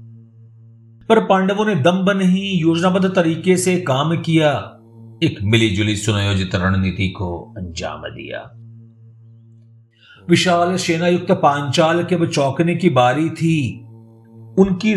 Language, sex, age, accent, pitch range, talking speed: Hindi, male, 50-69, native, 110-165 Hz, 100 wpm